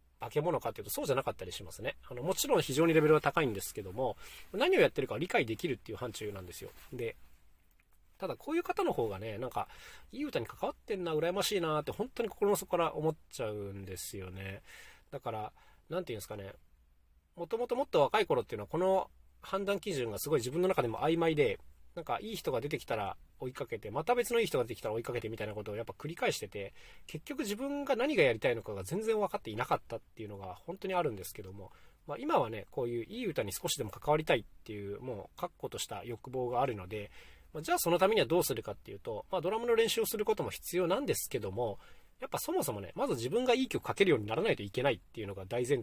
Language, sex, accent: Japanese, male, native